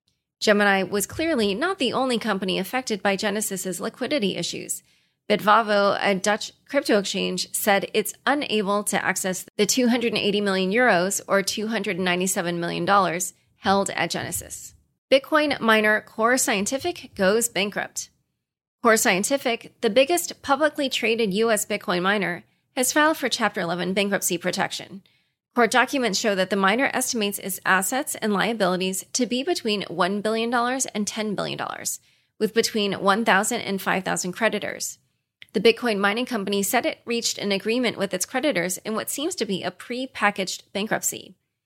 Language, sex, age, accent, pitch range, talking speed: English, female, 30-49, American, 190-240 Hz, 145 wpm